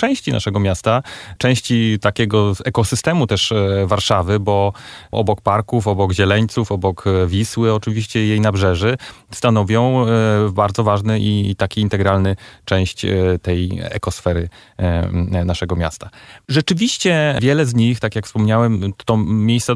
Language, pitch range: Polish, 95-125 Hz